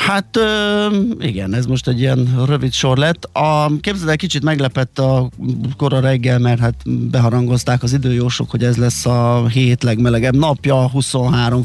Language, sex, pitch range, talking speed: Hungarian, male, 120-135 Hz, 155 wpm